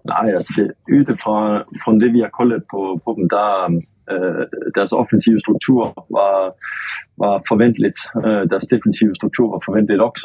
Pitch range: 90-110 Hz